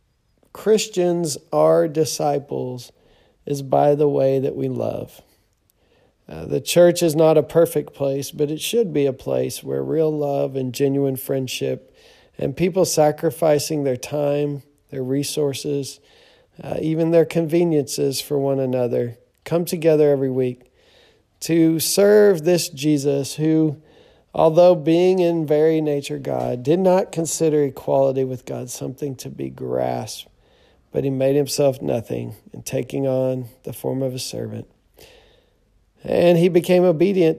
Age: 40-59